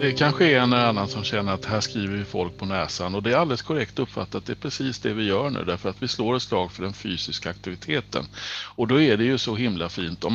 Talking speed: 280 wpm